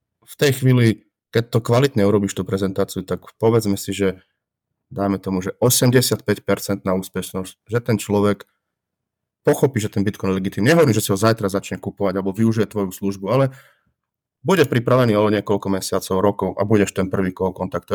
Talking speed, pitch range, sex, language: 170 wpm, 100-115 Hz, male, Slovak